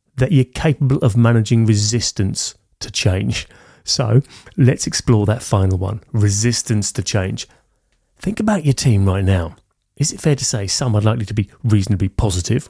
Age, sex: 30-49, male